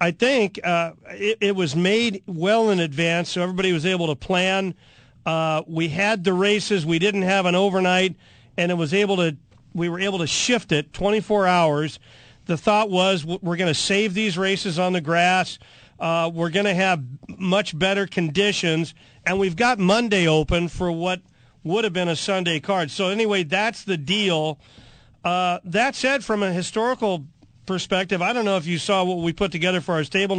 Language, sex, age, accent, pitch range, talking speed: English, male, 40-59, American, 170-210 Hz, 190 wpm